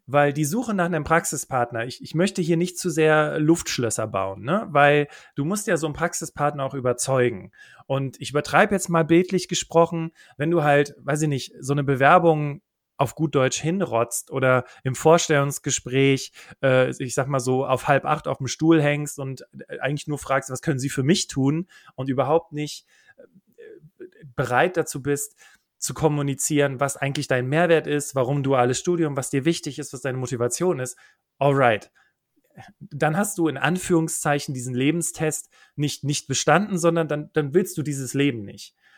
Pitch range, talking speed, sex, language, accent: 135-165 Hz, 175 wpm, male, German, German